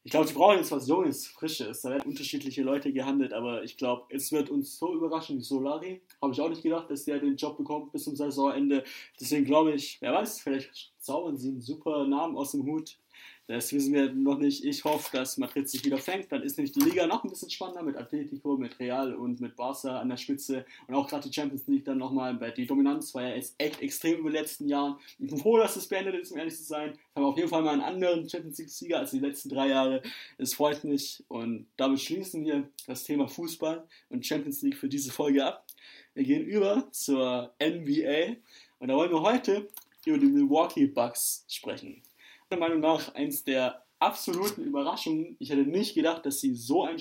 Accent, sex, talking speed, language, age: German, male, 220 wpm, German, 20-39